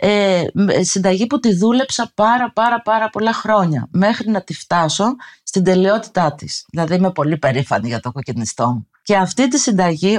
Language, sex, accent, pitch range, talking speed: Greek, female, native, 175-230 Hz, 170 wpm